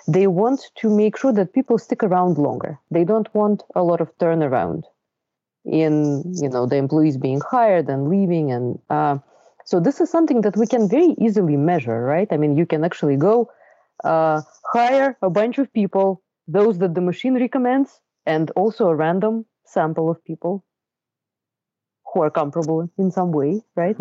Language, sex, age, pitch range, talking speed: English, female, 30-49, 150-210 Hz, 175 wpm